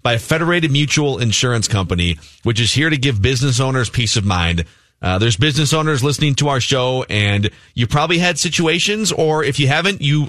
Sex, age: male, 30-49